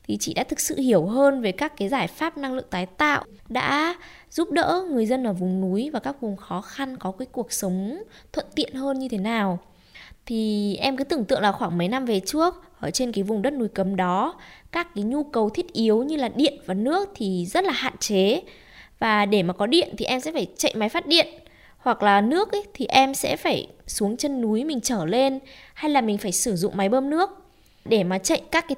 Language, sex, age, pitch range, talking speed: Vietnamese, female, 20-39, 205-290 Hz, 240 wpm